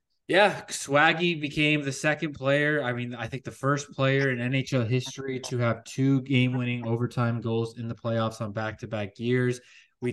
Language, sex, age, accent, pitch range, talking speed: English, male, 20-39, American, 115-135 Hz, 170 wpm